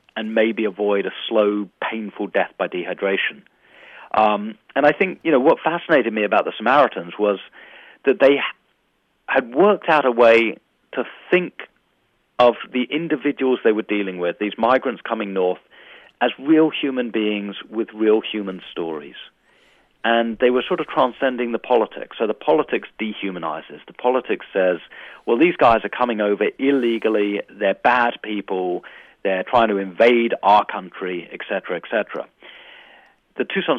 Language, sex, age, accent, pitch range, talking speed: English, male, 40-59, British, 100-125 Hz, 155 wpm